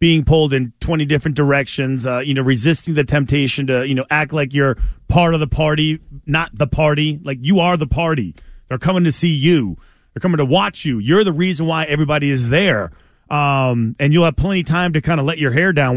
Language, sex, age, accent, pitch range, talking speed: English, male, 30-49, American, 135-180 Hz, 230 wpm